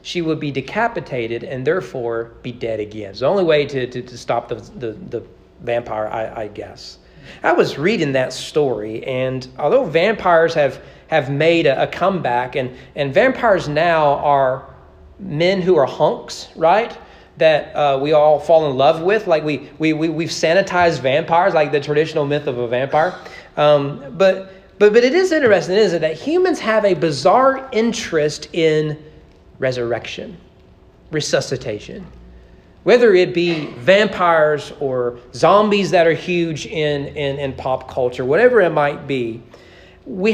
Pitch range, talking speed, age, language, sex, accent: 135-195 Hz, 160 wpm, 40-59, English, male, American